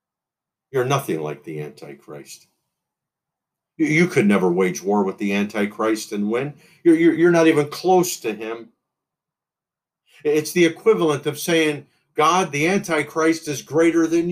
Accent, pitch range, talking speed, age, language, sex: American, 125-170 Hz, 135 wpm, 50-69, English, male